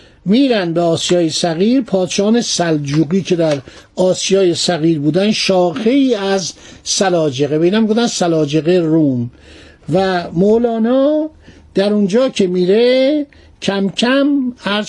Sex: male